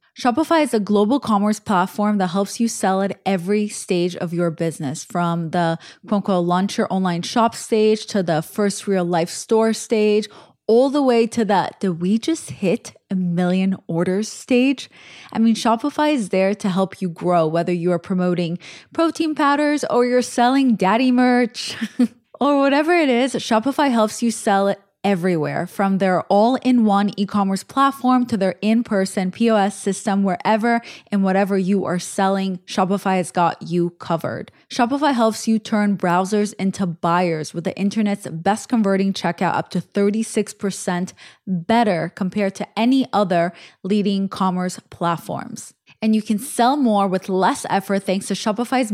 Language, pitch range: English, 185-230 Hz